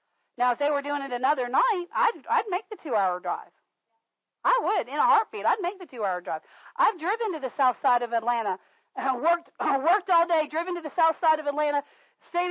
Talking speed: 220 wpm